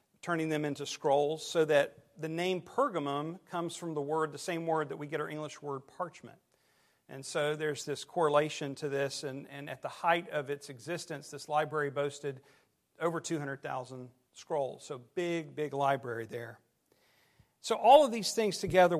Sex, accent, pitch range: male, American, 145-180 Hz